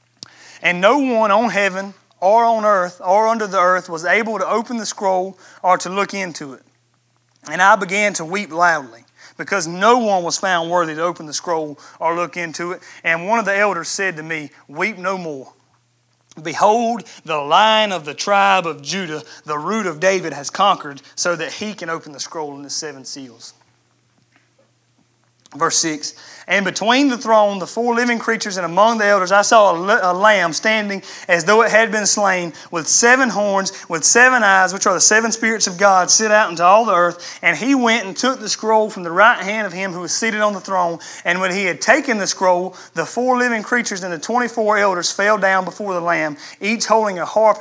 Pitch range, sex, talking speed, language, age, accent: 165-210 Hz, male, 210 wpm, English, 30-49, American